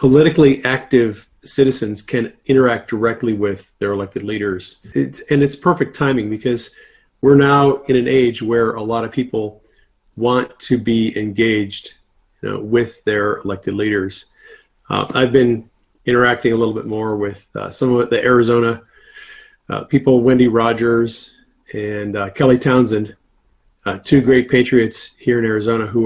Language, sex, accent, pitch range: English, male, American, 110-130 Hz